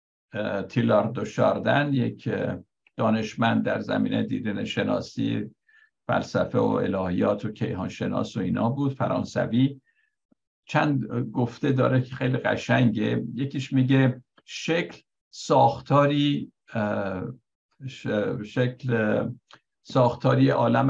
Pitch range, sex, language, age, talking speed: 110-135 Hz, male, Persian, 60-79, 90 wpm